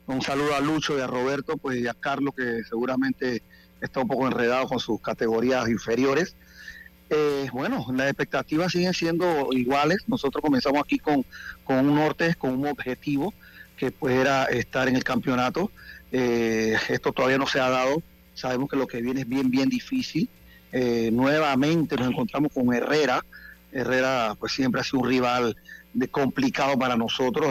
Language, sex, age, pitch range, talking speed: Spanish, male, 30-49, 125-145 Hz, 170 wpm